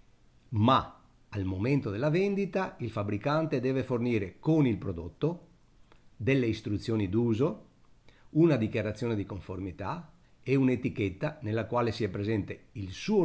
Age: 50-69